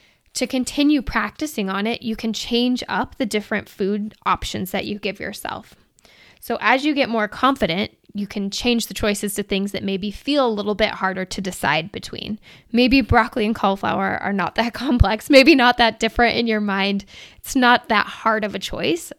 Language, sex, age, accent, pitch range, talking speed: English, female, 10-29, American, 205-245 Hz, 195 wpm